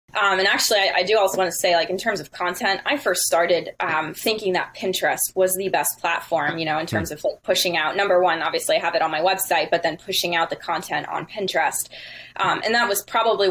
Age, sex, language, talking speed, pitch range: 20-39, female, English, 250 wpm, 170-205 Hz